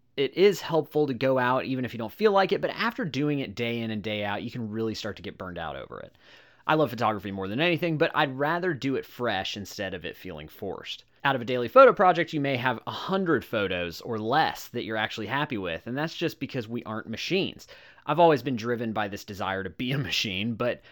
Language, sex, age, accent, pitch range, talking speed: English, male, 30-49, American, 110-150 Hz, 245 wpm